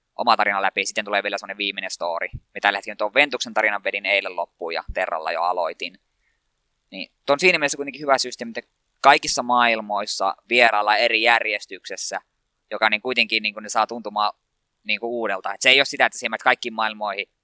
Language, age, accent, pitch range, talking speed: Finnish, 20-39, native, 105-130 Hz, 175 wpm